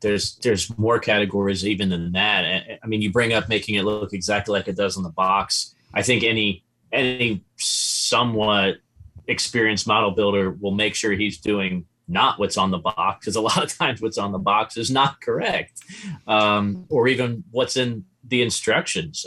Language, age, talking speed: English, 30-49, 185 wpm